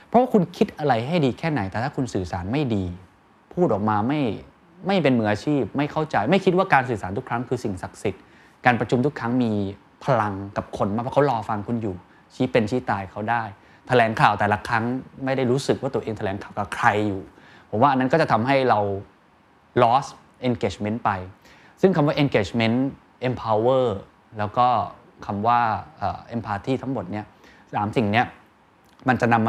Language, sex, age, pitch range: Thai, male, 20-39, 100-130 Hz